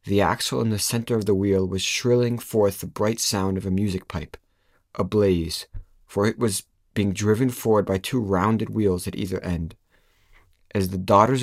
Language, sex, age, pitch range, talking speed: English, male, 30-49, 95-110 Hz, 190 wpm